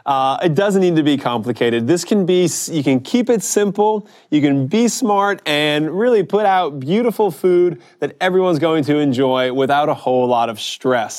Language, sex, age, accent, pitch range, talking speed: English, male, 20-39, American, 130-175 Hz, 195 wpm